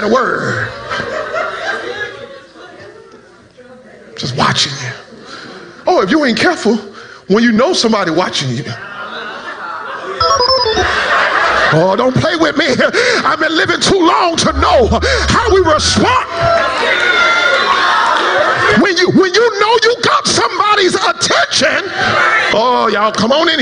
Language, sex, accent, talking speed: English, male, American, 110 wpm